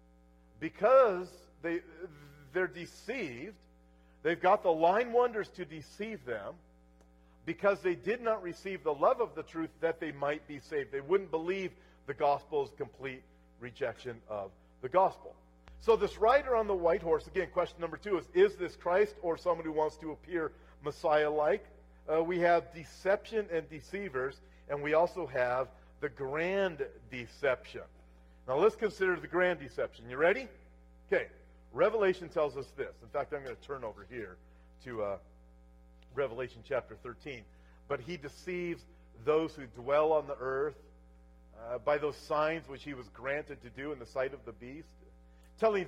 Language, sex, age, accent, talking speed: English, male, 50-69, American, 160 wpm